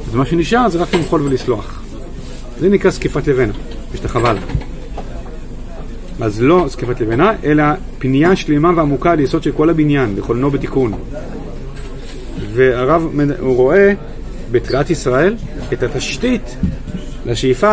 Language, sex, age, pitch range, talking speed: Hebrew, male, 40-59, 125-165 Hz, 120 wpm